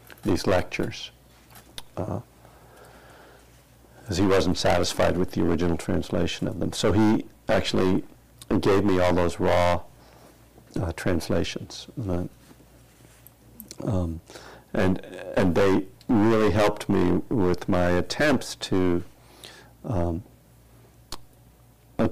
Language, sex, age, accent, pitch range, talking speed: English, male, 70-89, American, 85-105 Hz, 100 wpm